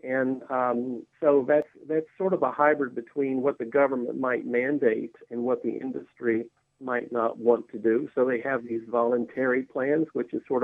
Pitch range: 120-140 Hz